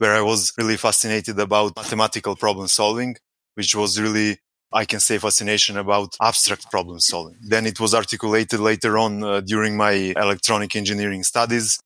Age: 20-39